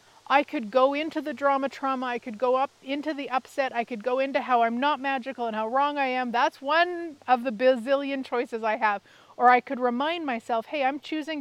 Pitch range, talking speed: 220-280 Hz, 225 wpm